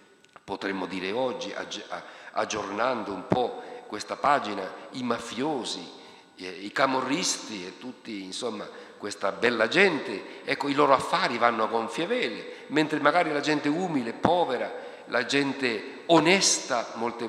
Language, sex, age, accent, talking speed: Italian, male, 50-69, native, 125 wpm